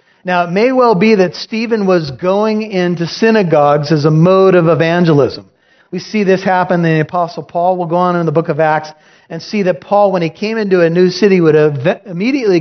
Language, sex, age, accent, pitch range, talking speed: English, male, 40-59, American, 165-205 Hz, 210 wpm